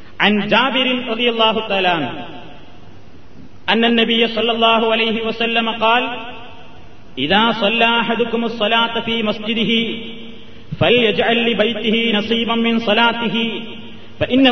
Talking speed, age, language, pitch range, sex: 105 wpm, 30-49, Malayalam, 215-240 Hz, male